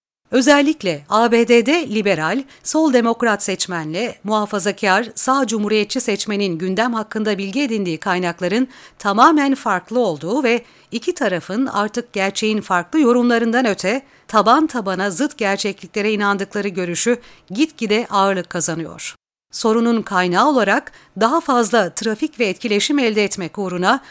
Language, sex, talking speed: Turkish, female, 115 wpm